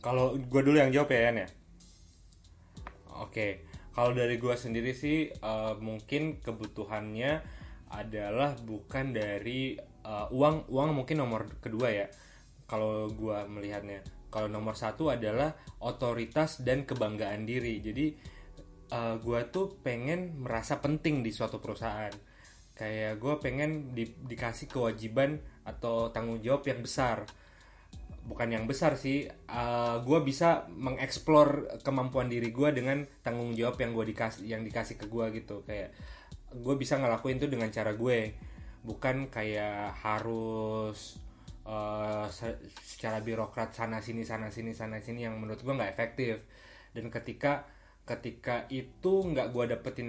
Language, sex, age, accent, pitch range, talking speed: Indonesian, male, 20-39, native, 110-135 Hz, 135 wpm